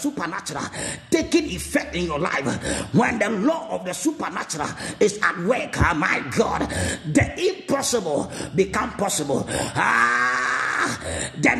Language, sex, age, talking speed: Spanish, male, 50-69, 125 wpm